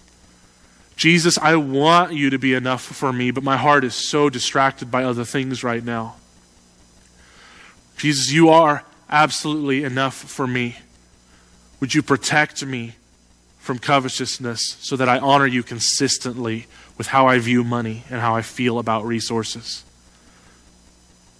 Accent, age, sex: American, 20-39, male